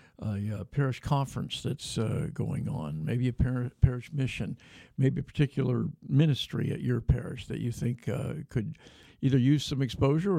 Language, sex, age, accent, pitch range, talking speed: English, male, 60-79, American, 120-145 Hz, 175 wpm